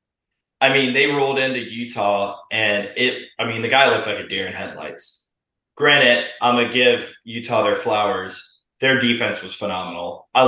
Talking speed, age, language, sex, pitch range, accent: 180 wpm, 20-39, English, male, 100-130 Hz, American